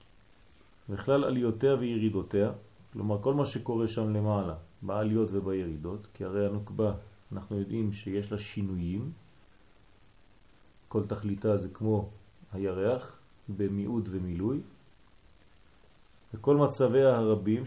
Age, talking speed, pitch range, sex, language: 30-49, 90 wpm, 100-115 Hz, male, French